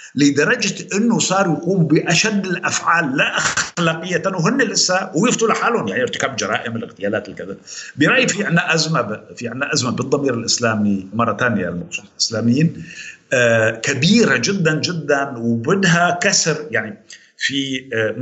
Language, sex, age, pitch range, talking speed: Arabic, male, 50-69, 140-200 Hz, 125 wpm